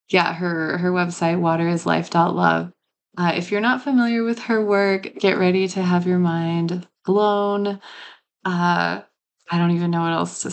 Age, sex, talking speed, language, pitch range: 20-39, female, 160 wpm, English, 170-195 Hz